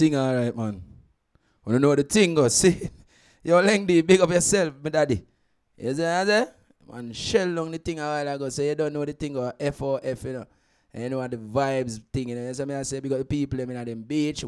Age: 20-39